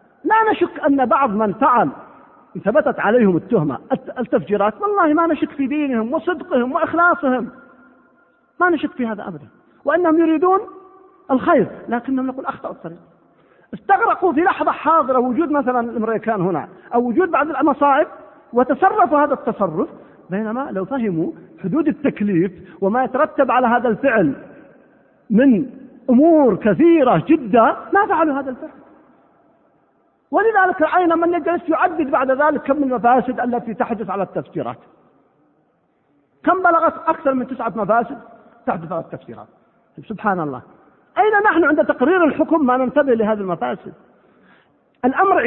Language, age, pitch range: Arabic, 40-59, 240-320 Hz